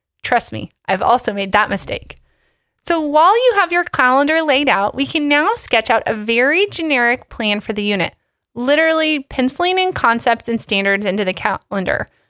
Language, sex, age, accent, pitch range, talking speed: English, female, 30-49, American, 210-305 Hz, 175 wpm